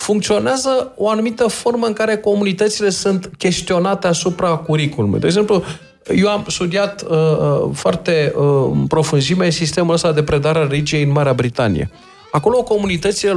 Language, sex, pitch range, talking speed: Romanian, male, 145-205 Hz, 140 wpm